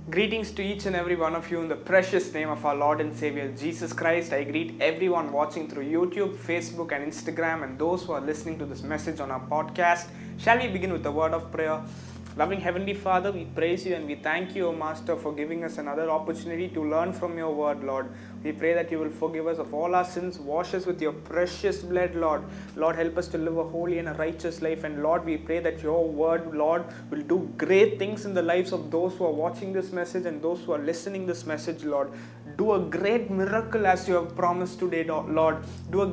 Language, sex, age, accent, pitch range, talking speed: English, male, 20-39, Indian, 155-190 Hz, 235 wpm